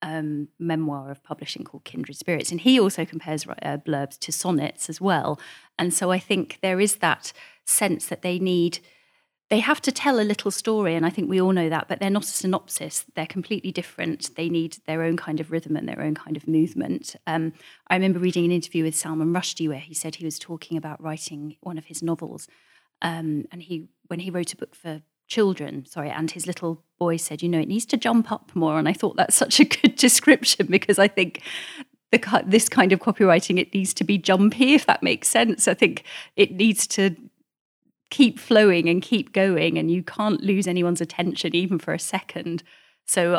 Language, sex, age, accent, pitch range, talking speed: English, female, 30-49, British, 160-200 Hz, 210 wpm